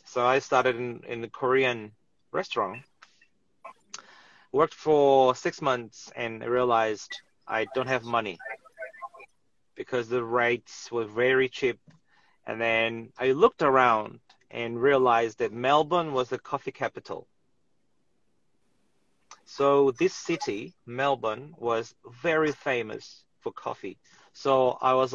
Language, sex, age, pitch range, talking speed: English, male, 30-49, 120-155 Hz, 115 wpm